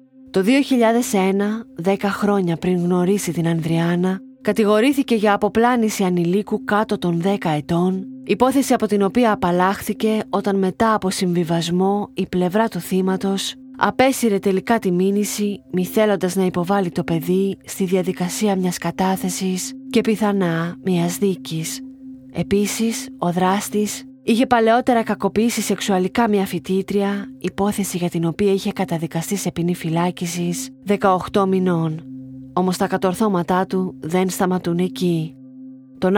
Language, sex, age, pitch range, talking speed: Greek, female, 30-49, 180-215 Hz, 125 wpm